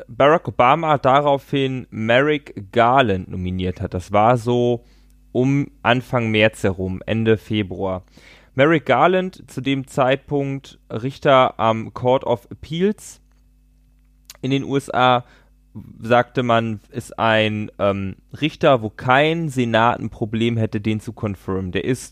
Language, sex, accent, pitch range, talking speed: German, male, German, 105-130 Hz, 120 wpm